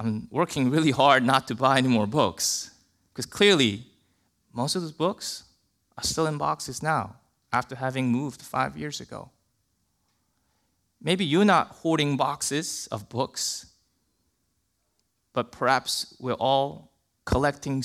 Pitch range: 115-185 Hz